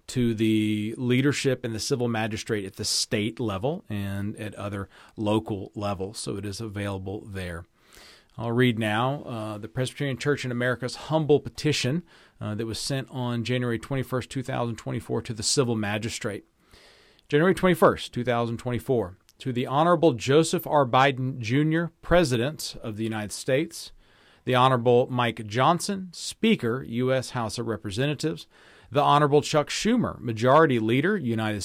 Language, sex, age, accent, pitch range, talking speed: English, male, 40-59, American, 110-145 Hz, 140 wpm